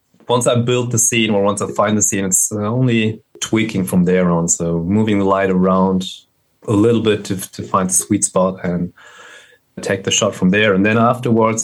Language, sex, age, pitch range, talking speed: English, male, 30-49, 95-115 Hz, 205 wpm